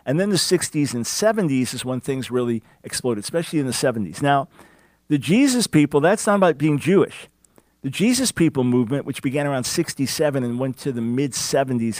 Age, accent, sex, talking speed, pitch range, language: 50-69, American, male, 185 wpm, 125-155 Hz, English